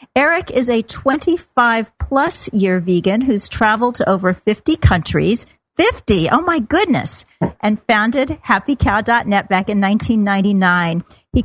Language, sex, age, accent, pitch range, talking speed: English, female, 50-69, American, 200-265 Hz, 120 wpm